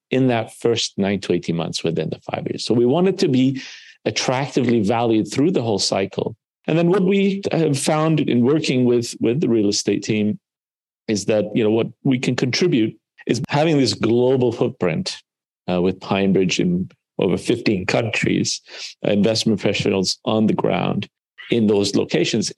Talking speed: 175 wpm